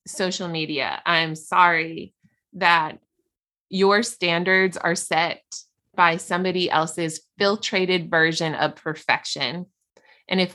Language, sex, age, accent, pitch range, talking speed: English, female, 20-39, American, 160-195 Hz, 100 wpm